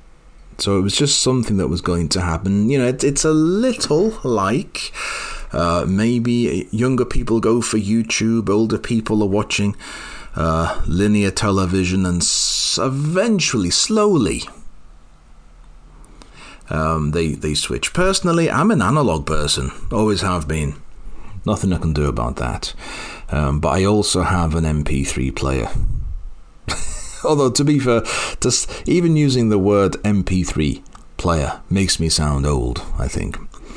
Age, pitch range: 40-59, 80-120 Hz